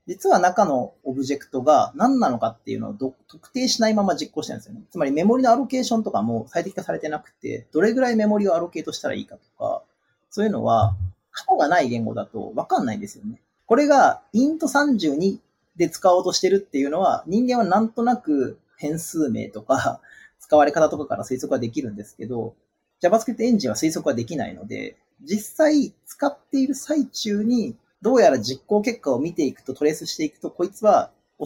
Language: Japanese